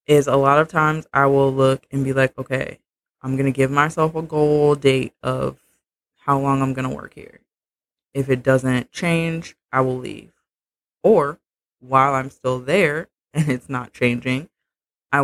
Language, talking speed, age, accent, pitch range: English, 170 wpm, 20-39, American, 130-155 Hz